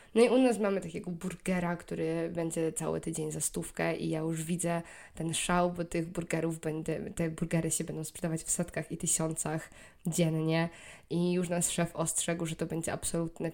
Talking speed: 180 wpm